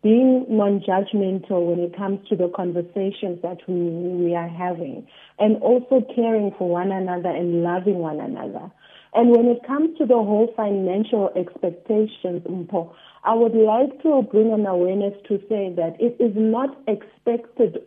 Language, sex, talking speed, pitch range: English, female, 155 wpm, 180-235 Hz